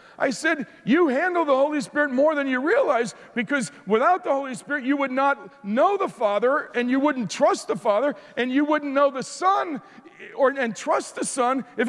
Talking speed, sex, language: 200 wpm, male, English